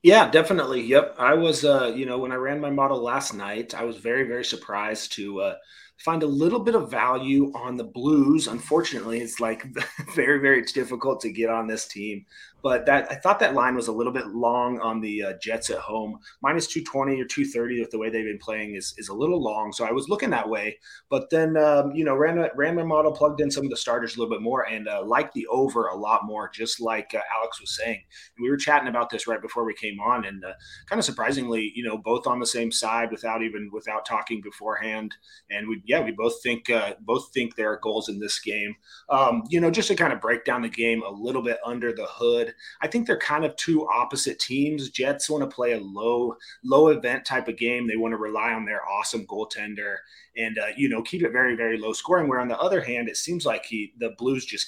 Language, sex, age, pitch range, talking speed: English, male, 30-49, 115-145 Hz, 245 wpm